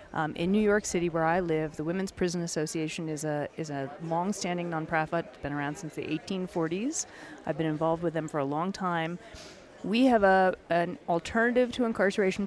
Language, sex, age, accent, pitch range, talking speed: English, female, 30-49, American, 160-200 Hz, 195 wpm